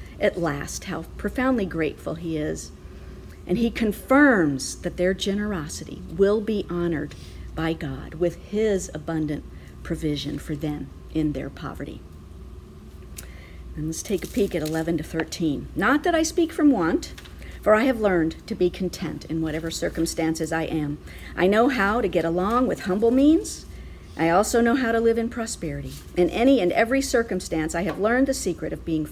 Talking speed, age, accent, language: 170 wpm, 50-69, American, English